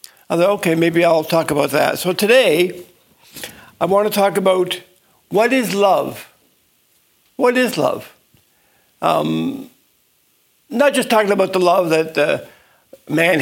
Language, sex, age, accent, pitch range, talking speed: English, male, 60-79, American, 150-195 Hz, 140 wpm